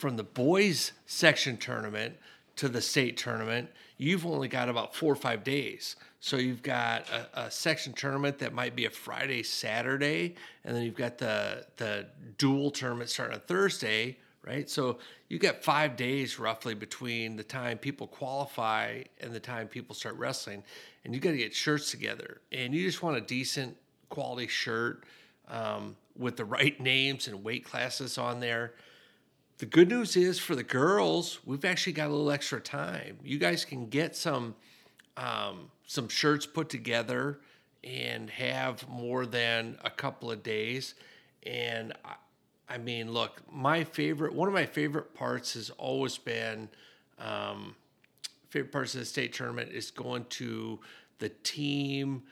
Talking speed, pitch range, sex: 165 wpm, 115-145 Hz, male